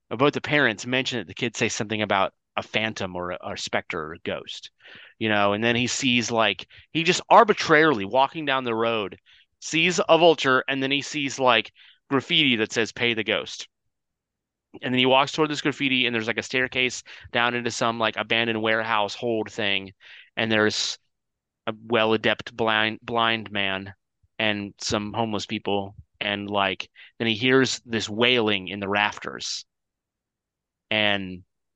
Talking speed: 165 wpm